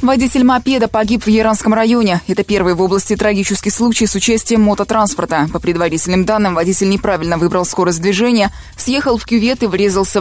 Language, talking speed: Russian, 165 wpm